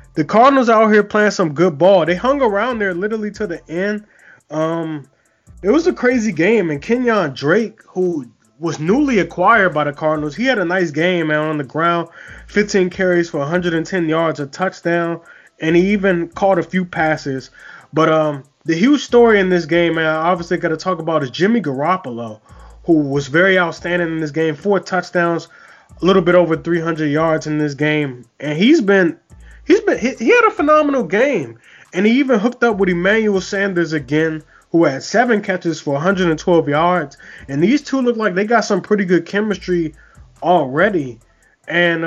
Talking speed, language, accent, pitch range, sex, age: 185 wpm, English, American, 155-200 Hz, male, 20-39